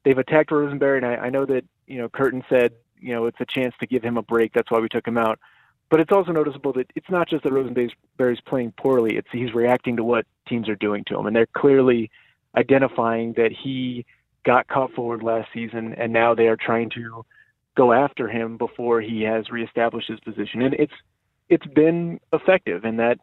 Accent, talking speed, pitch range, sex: American, 215 wpm, 115-135 Hz, male